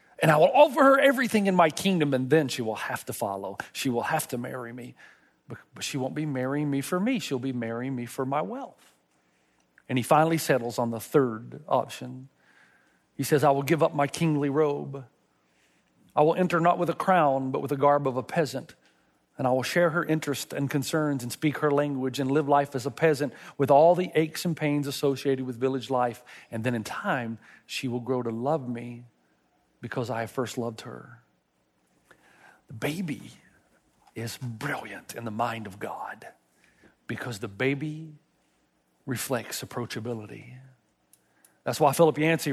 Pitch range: 125-160 Hz